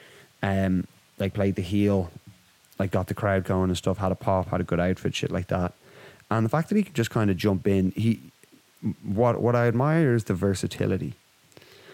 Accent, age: Irish, 20-39